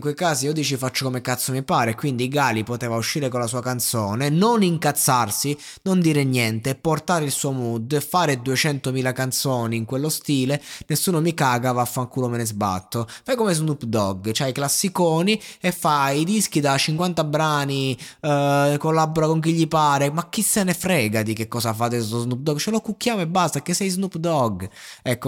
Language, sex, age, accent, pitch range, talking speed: Italian, male, 20-39, native, 120-160 Hz, 195 wpm